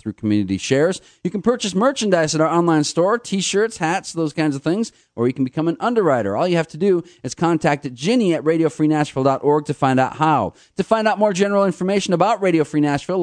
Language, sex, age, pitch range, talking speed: English, male, 40-59, 125-175 Hz, 215 wpm